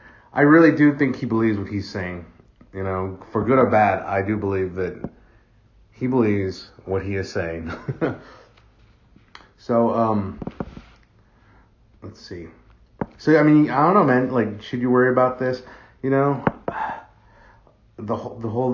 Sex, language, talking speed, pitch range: male, English, 145 wpm, 95-120 Hz